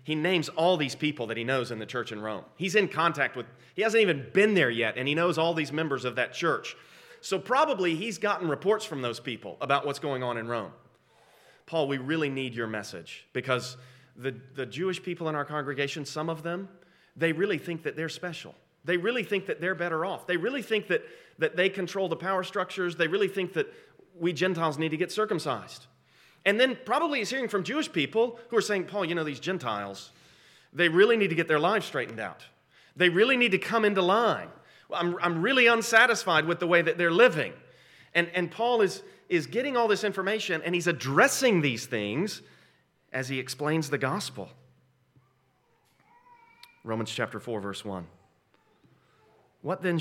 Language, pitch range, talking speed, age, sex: English, 130-190 Hz, 195 wpm, 30-49, male